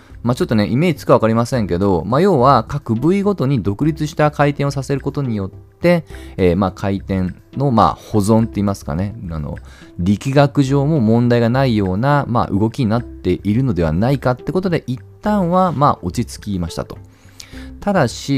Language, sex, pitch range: Japanese, male, 90-150 Hz